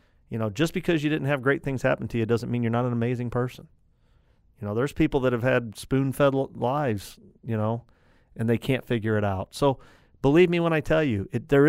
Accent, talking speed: American, 225 wpm